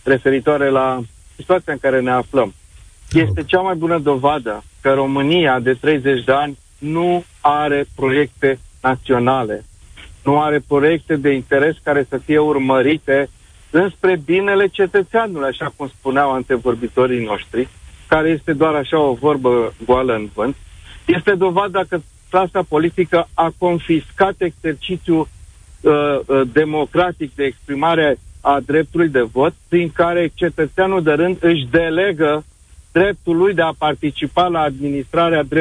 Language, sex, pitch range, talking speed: Romanian, male, 135-170 Hz, 130 wpm